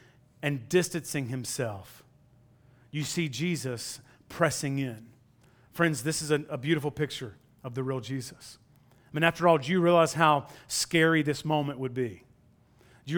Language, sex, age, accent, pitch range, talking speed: English, male, 30-49, American, 130-185 Hz, 155 wpm